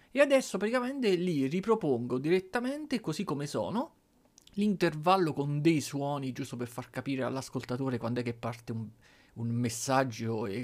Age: 30-49